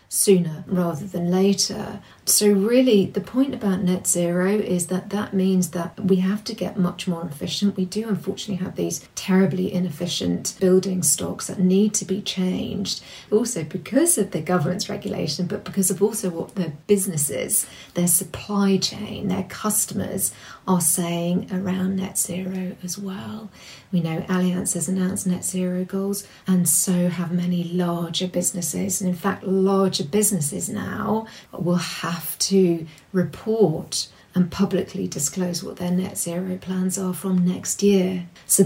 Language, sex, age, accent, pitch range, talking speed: English, female, 40-59, British, 175-200 Hz, 155 wpm